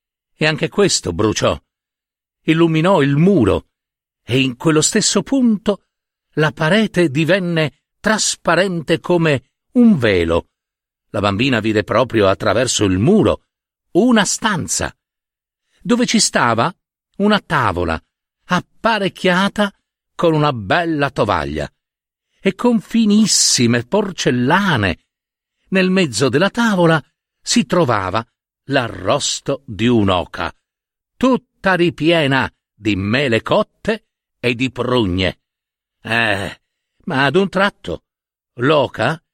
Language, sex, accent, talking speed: Italian, male, native, 100 wpm